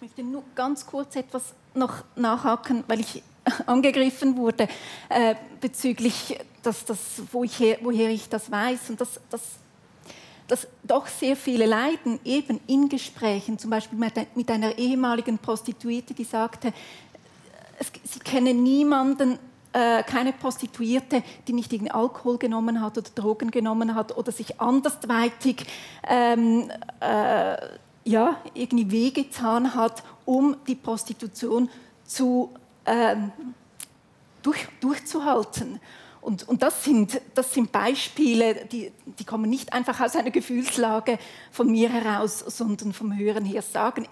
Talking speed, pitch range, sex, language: 130 wpm, 225-255 Hz, female, German